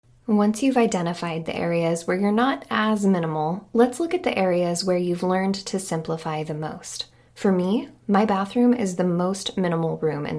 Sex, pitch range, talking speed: female, 165-210 Hz, 185 wpm